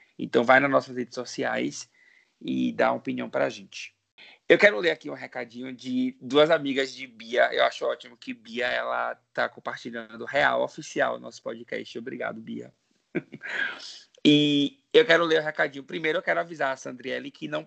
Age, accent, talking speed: 20-39, Brazilian, 180 wpm